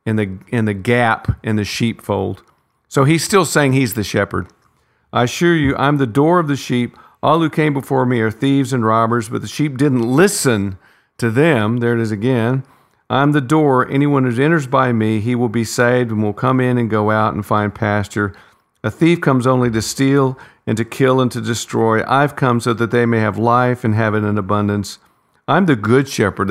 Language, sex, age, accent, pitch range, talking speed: English, male, 50-69, American, 105-130 Hz, 215 wpm